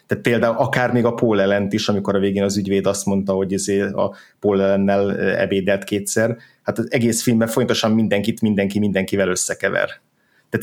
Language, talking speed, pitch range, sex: Hungarian, 170 wpm, 100-115 Hz, male